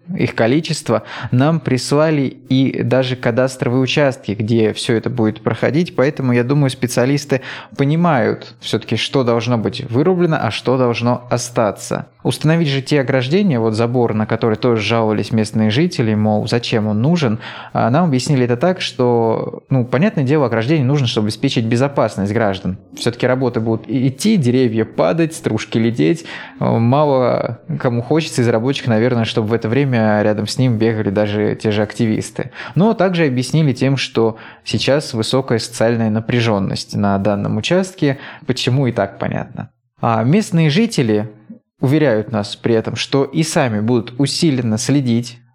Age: 20-39